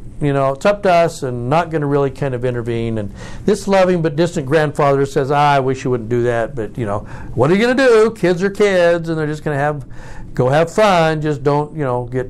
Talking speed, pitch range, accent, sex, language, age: 265 wpm, 125-165 Hz, American, male, English, 60-79